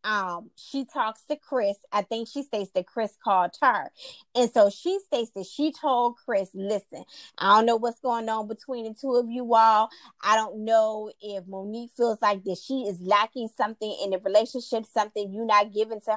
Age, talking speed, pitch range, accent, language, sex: 20-39, 205 wpm, 200-250 Hz, American, English, female